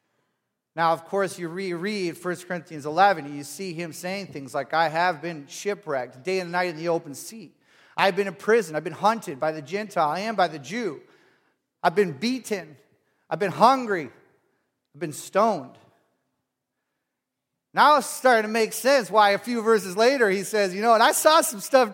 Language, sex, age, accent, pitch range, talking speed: English, male, 30-49, American, 170-240 Hz, 190 wpm